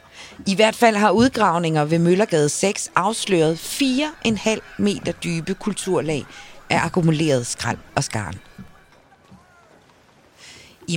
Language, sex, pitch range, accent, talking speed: Danish, female, 155-210 Hz, native, 105 wpm